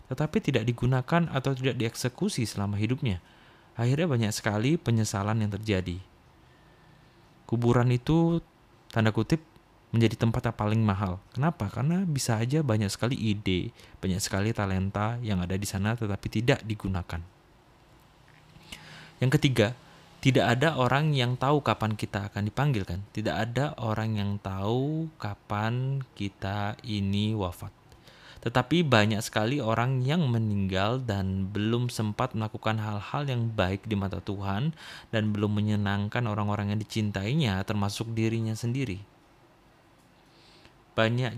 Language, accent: Indonesian, native